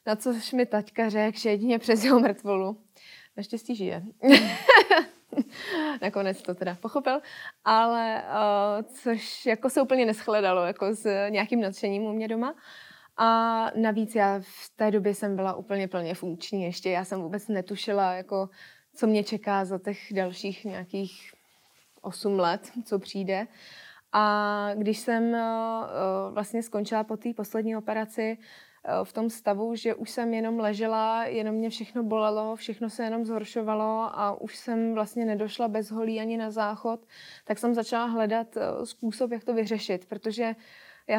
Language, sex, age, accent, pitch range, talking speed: Czech, female, 20-39, native, 205-235 Hz, 145 wpm